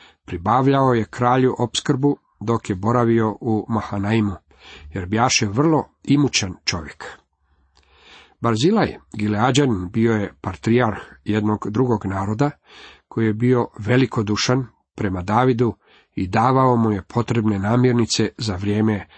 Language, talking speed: Croatian, 115 wpm